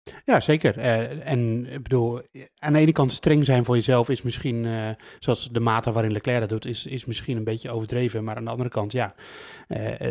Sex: male